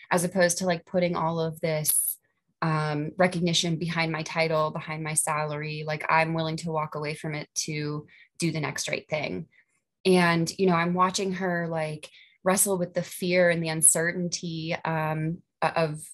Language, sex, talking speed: English, female, 170 wpm